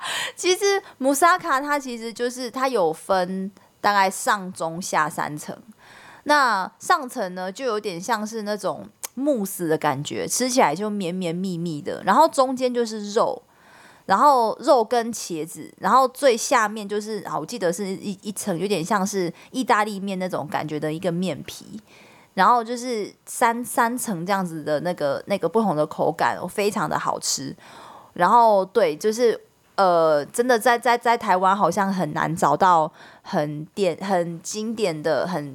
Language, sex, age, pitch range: Chinese, female, 20-39, 180-240 Hz